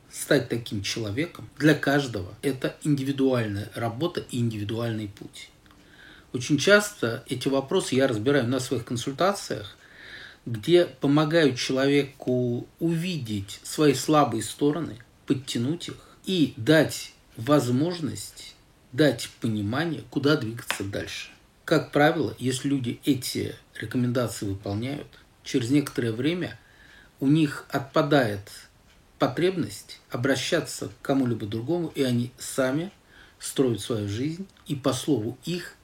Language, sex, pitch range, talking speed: Russian, male, 110-150 Hz, 110 wpm